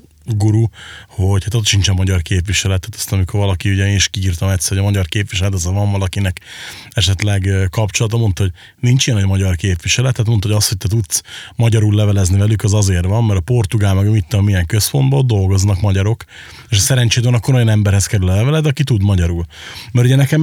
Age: 30-49